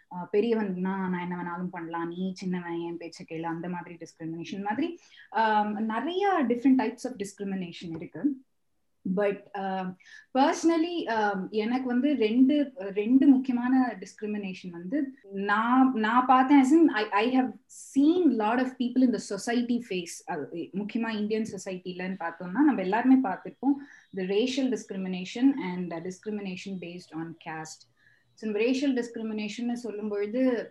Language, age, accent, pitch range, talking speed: Tamil, 20-39, native, 185-250 Hz, 70 wpm